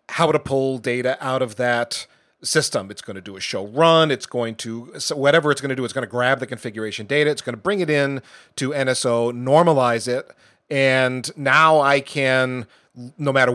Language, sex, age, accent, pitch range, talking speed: English, male, 40-59, American, 115-135 Hz, 210 wpm